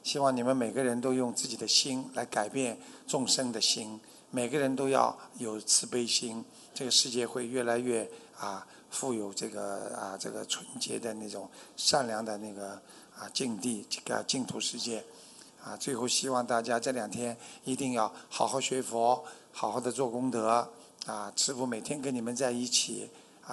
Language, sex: Chinese, male